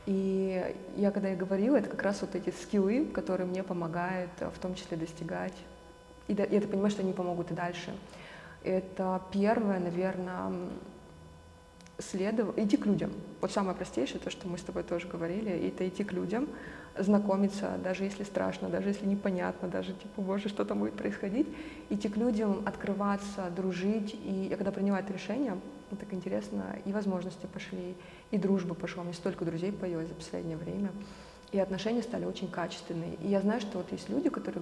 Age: 20-39